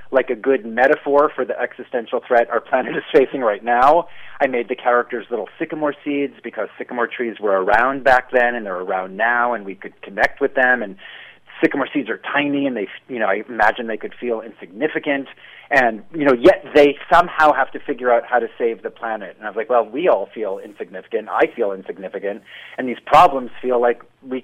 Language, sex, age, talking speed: English, male, 30-49, 210 wpm